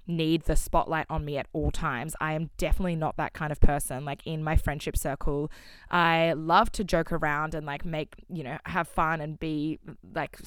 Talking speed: 205 wpm